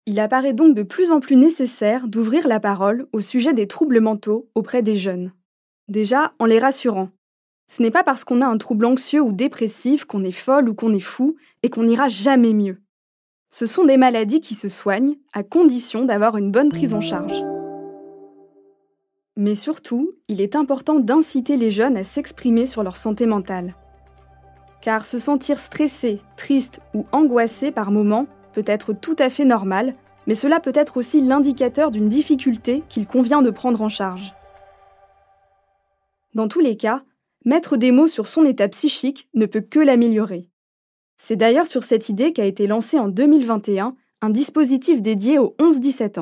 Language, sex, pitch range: French, female, 205-280 Hz